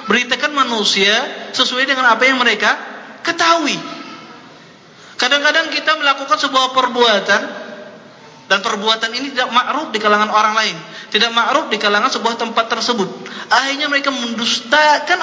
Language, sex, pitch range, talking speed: Malay, male, 210-275 Hz, 125 wpm